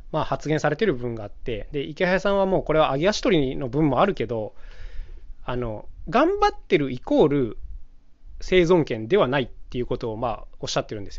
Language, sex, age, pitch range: Japanese, male, 20-39, 110-180 Hz